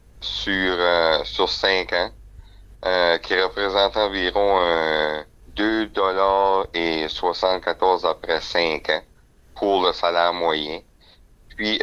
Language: French